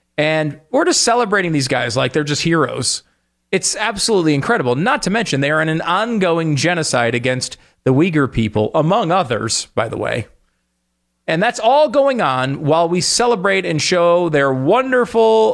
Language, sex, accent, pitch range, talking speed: English, male, American, 115-160 Hz, 165 wpm